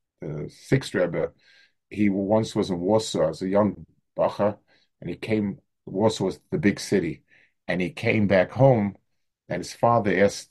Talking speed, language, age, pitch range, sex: 165 wpm, English, 50-69, 95-125 Hz, male